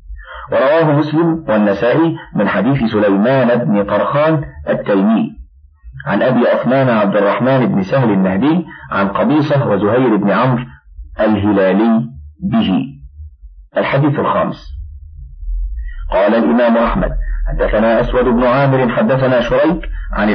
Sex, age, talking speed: male, 50-69, 105 wpm